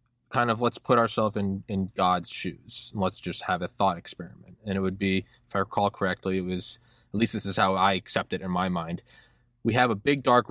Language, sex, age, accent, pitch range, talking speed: English, male, 20-39, American, 95-125 Hz, 240 wpm